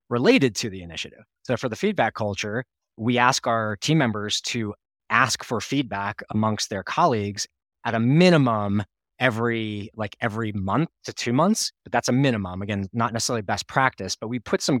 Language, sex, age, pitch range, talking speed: English, male, 20-39, 100-120 Hz, 180 wpm